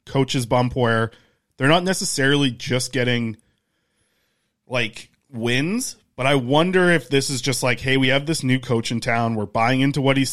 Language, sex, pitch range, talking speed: English, male, 120-145 Hz, 180 wpm